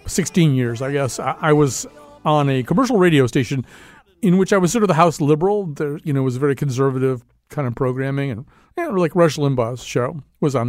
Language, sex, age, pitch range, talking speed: English, male, 50-69, 135-185 Hz, 220 wpm